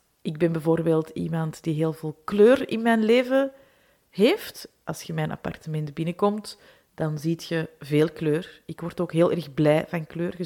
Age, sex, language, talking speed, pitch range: 30-49, female, Dutch, 180 wpm, 160-195 Hz